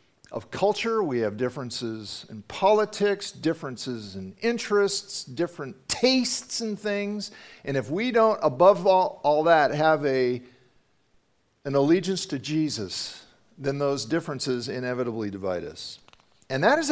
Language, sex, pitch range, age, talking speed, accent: English, male, 130-205 Hz, 50-69, 130 wpm, American